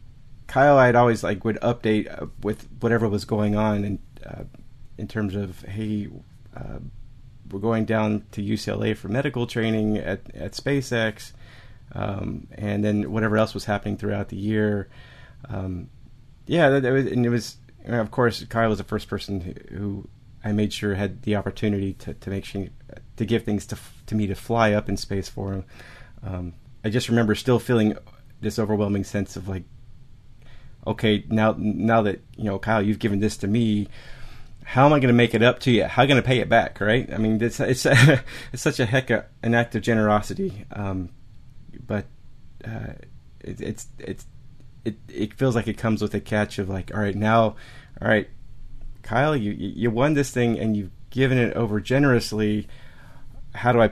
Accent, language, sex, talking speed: American, English, male, 190 wpm